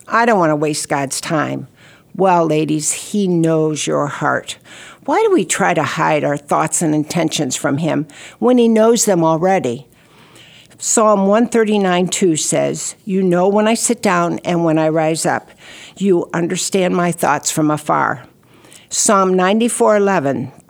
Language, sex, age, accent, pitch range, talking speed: English, female, 60-79, American, 155-200 Hz, 150 wpm